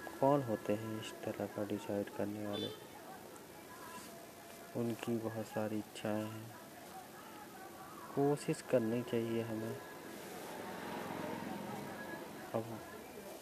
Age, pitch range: 20-39, 110-130 Hz